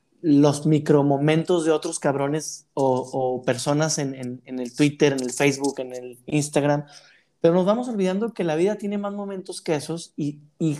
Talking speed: 185 wpm